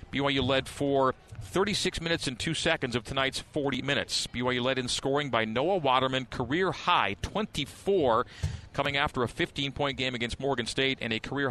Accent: American